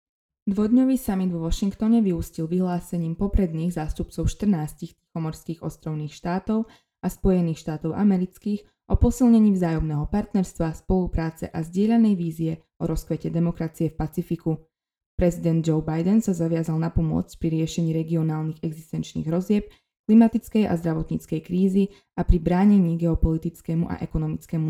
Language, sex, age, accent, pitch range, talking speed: Czech, female, 20-39, native, 160-185 Hz, 125 wpm